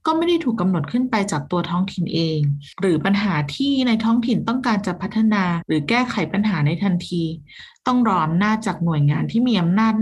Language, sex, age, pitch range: Thai, female, 20-39, 170-230 Hz